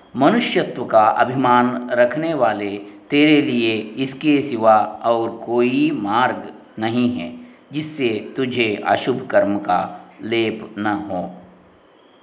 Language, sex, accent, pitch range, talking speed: Kannada, male, native, 115-170 Hz, 95 wpm